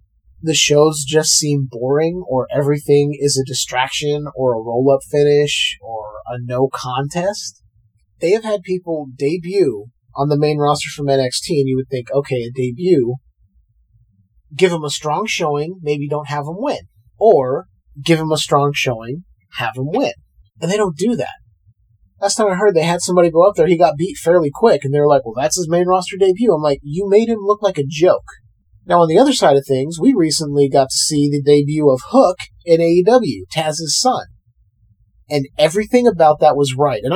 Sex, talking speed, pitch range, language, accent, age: male, 195 wpm, 130-175 Hz, English, American, 30-49